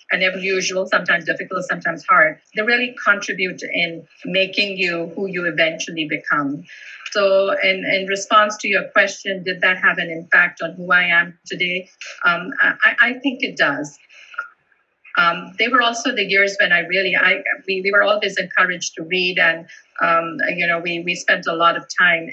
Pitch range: 165-205 Hz